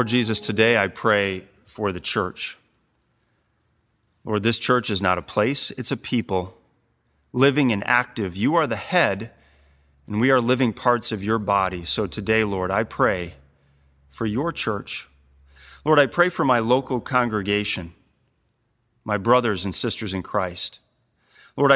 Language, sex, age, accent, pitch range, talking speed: English, male, 30-49, American, 95-125 Hz, 150 wpm